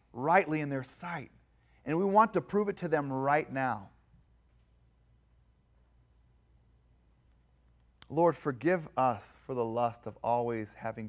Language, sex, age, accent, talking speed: English, male, 30-49, American, 125 wpm